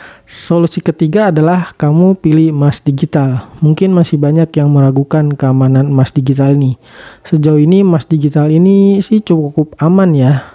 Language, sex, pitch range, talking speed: Indonesian, male, 140-165 Hz, 140 wpm